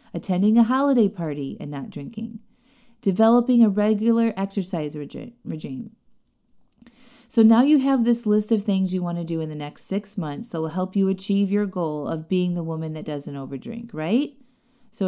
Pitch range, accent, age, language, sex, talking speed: 180-230 Hz, American, 30-49, English, female, 180 wpm